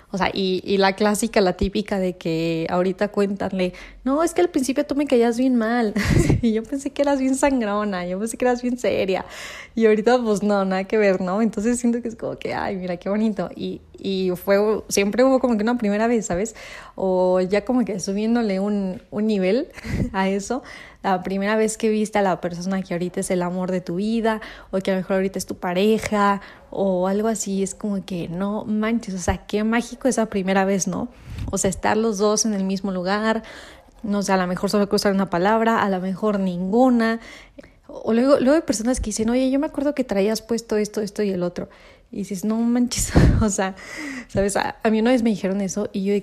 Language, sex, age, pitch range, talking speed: Spanish, female, 20-39, 190-230 Hz, 230 wpm